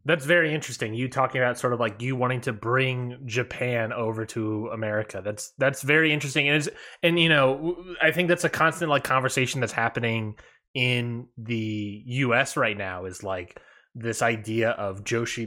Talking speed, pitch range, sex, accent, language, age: 180 wpm, 115-155 Hz, male, American, English, 20-39